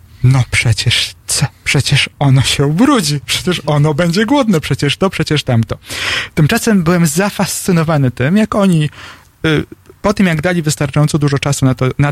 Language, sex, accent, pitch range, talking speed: Polish, male, native, 135-190 Hz, 145 wpm